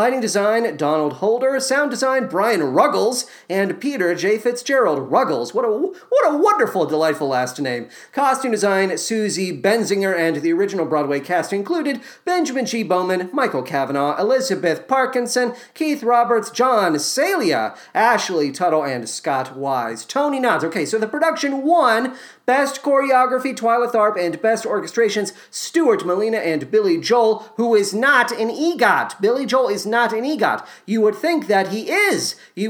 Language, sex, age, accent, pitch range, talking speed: English, male, 40-59, American, 185-275 Hz, 150 wpm